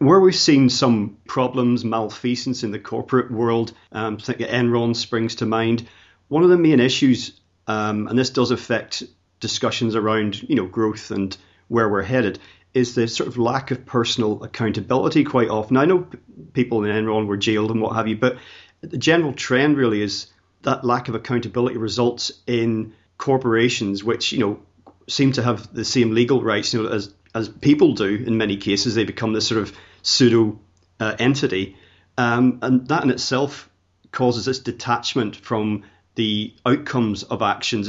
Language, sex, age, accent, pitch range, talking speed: English, male, 40-59, British, 105-125 Hz, 175 wpm